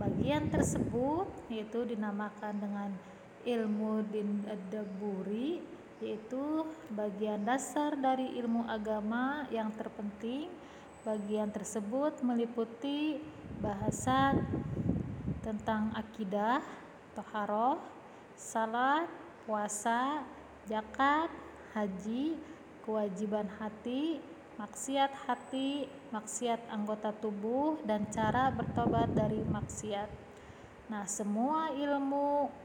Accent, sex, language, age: native, female, Indonesian, 20-39